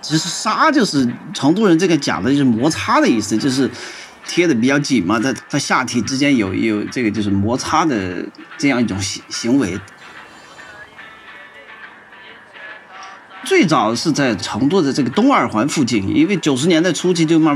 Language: Chinese